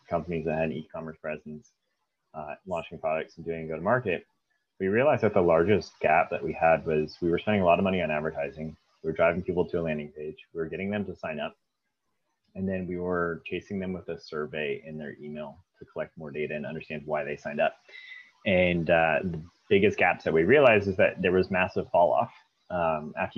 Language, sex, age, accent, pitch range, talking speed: English, male, 30-49, American, 80-90 Hz, 215 wpm